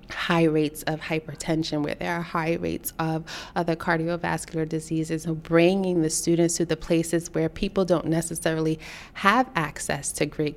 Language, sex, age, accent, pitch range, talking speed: English, female, 30-49, American, 155-170 Hz, 160 wpm